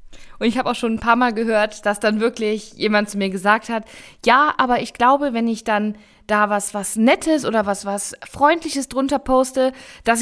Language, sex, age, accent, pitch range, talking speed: German, female, 20-39, German, 205-250 Hz, 205 wpm